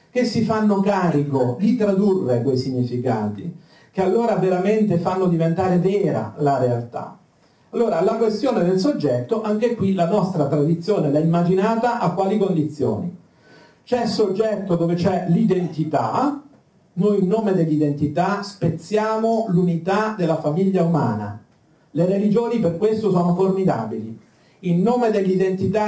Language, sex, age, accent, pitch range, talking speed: Italian, male, 50-69, native, 155-210 Hz, 130 wpm